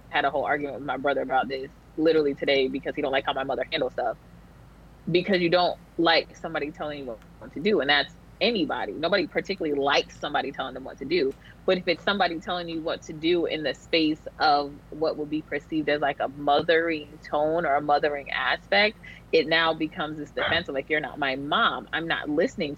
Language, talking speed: English, 220 wpm